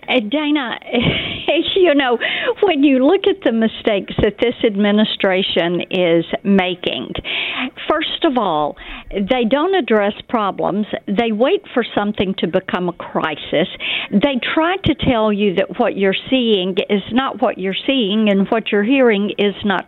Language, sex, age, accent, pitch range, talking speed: English, female, 50-69, American, 205-275 Hz, 150 wpm